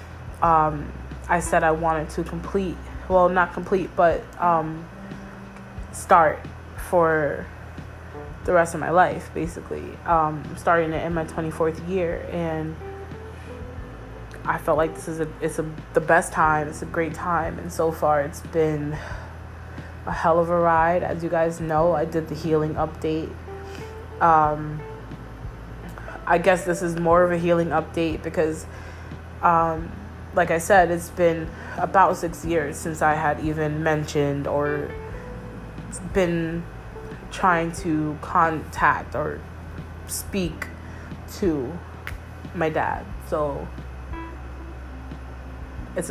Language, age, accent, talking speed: English, 20-39, American, 130 wpm